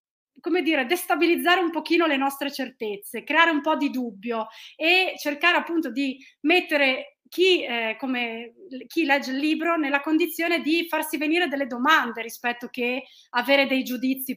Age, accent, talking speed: 30-49, native, 155 wpm